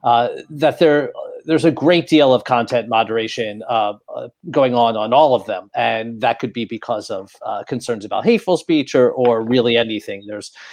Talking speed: 190 wpm